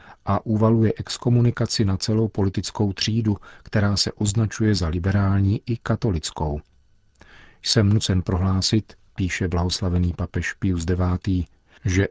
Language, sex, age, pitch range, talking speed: Czech, male, 40-59, 90-110 Hz, 115 wpm